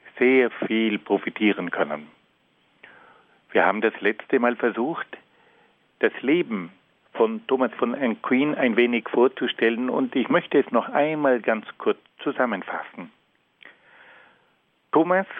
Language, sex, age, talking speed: German, male, 50-69, 115 wpm